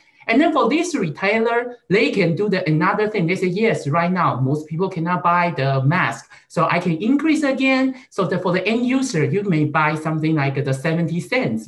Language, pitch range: English, 150-215 Hz